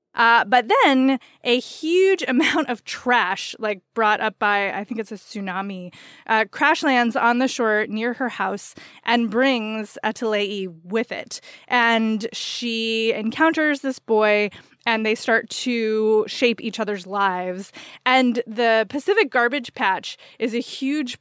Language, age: English, 20-39